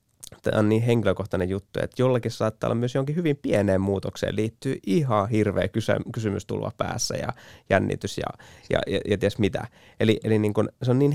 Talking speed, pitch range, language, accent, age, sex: 190 wpm, 100-120 Hz, Finnish, native, 20-39, male